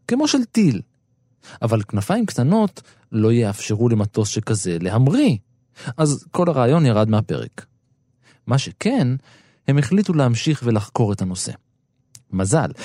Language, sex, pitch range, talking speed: Hebrew, male, 115-165 Hz, 115 wpm